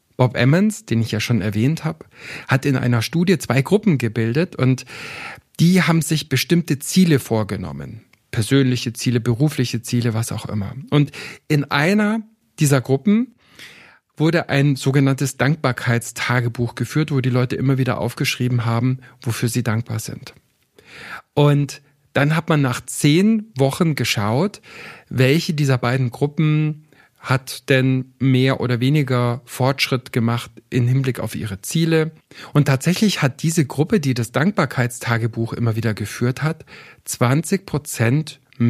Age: 50-69